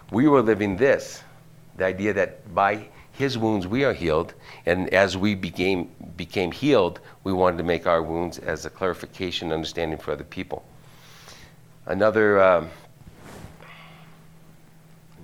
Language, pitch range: English, 85-110 Hz